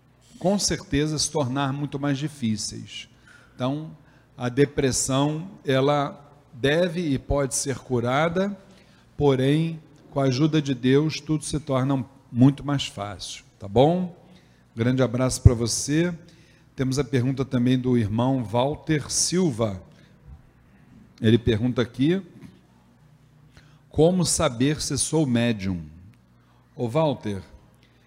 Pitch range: 120-155 Hz